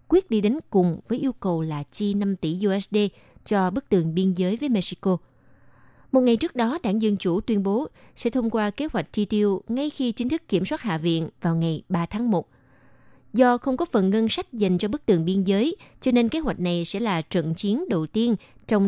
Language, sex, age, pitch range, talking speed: Vietnamese, female, 20-39, 175-225 Hz, 230 wpm